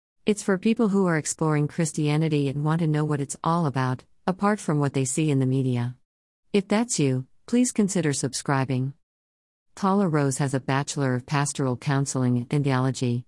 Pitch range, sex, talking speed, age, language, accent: 130-165 Hz, female, 175 wpm, 50-69, English, American